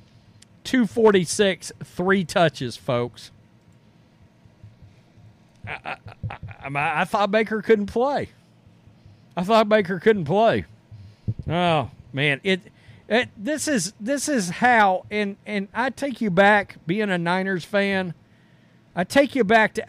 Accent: American